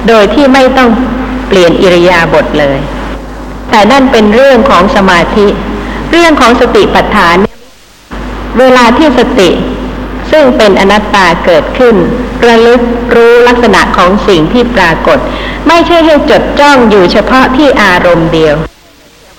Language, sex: Thai, female